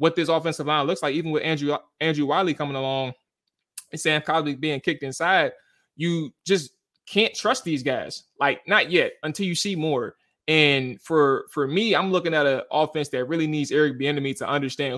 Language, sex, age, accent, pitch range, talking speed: English, male, 20-39, American, 135-160 Hz, 190 wpm